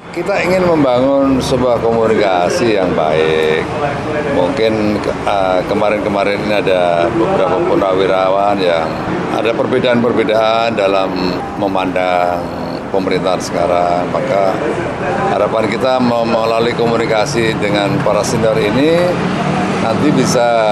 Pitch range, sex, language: 110-160 Hz, male, Indonesian